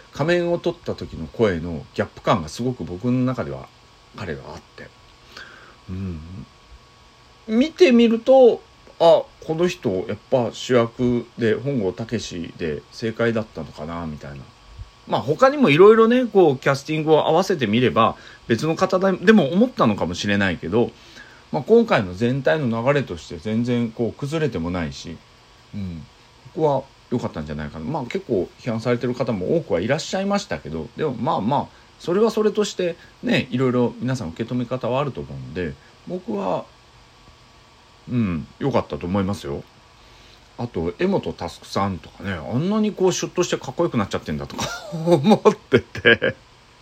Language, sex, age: Japanese, male, 40-59